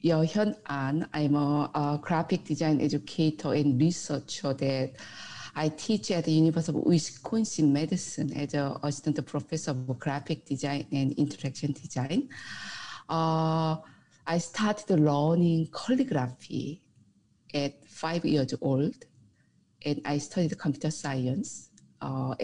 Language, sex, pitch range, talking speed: English, female, 135-160 Hz, 120 wpm